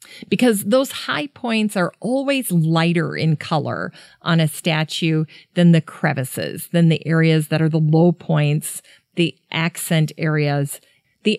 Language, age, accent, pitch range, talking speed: English, 40-59, American, 165-195 Hz, 140 wpm